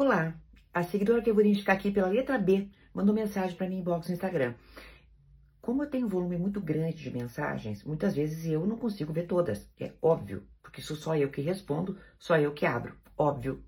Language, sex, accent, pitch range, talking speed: Portuguese, female, Brazilian, 165-210 Hz, 205 wpm